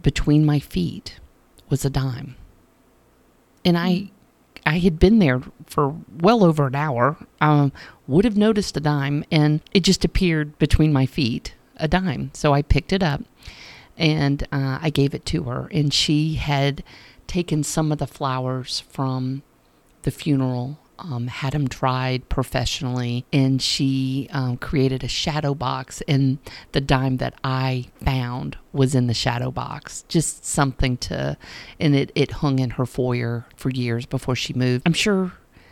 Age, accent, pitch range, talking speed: 50-69, American, 130-175 Hz, 160 wpm